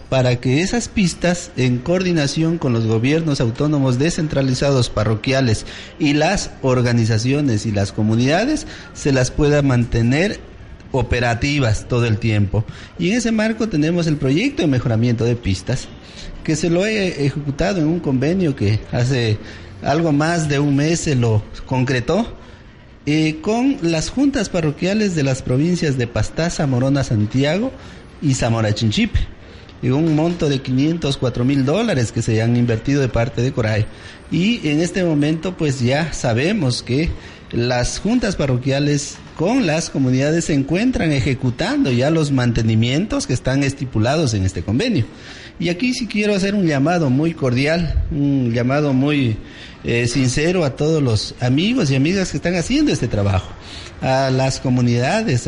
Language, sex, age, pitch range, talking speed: Spanish, male, 40-59, 120-160 Hz, 150 wpm